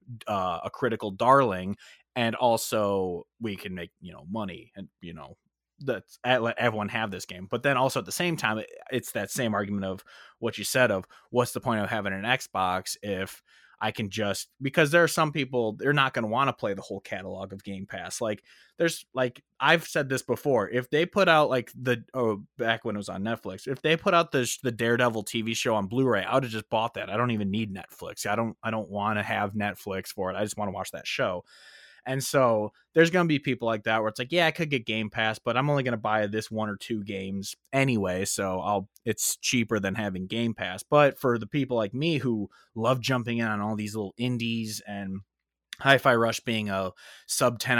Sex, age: male, 20-39